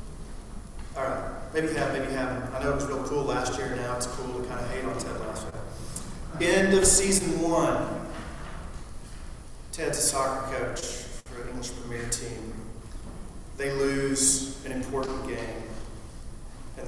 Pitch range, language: 125-175 Hz, English